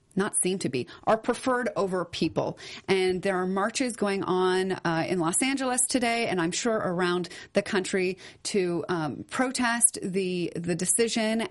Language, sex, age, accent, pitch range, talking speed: English, female, 30-49, American, 175-215 Hz, 160 wpm